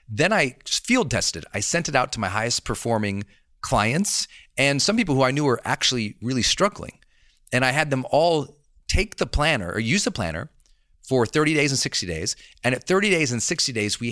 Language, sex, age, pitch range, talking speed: English, male, 40-59, 100-135 Hz, 210 wpm